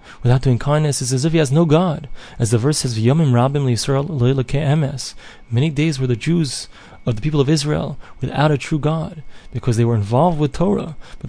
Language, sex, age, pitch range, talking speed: English, male, 20-39, 120-150 Hz, 185 wpm